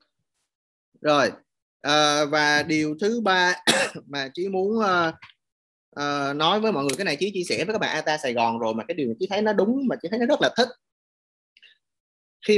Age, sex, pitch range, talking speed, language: 20-39, male, 125-185 Hz, 185 wpm, Vietnamese